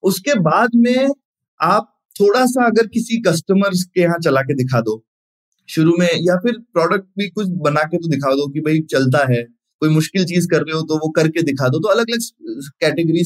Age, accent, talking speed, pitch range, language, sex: 20-39, native, 210 wpm, 150-205 Hz, Hindi, male